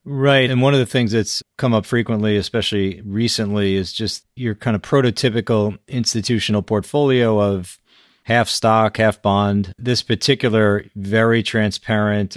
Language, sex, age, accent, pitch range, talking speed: English, male, 30-49, American, 95-110 Hz, 140 wpm